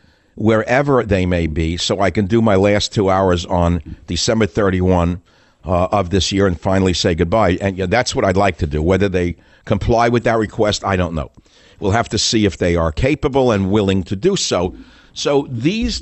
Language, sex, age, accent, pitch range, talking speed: English, male, 60-79, American, 90-120 Hz, 200 wpm